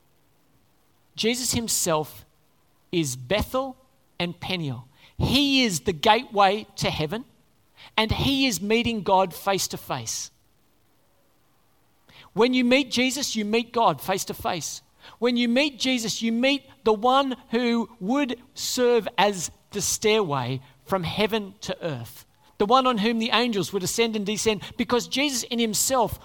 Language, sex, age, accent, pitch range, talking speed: English, male, 50-69, Australian, 150-235 Hz, 140 wpm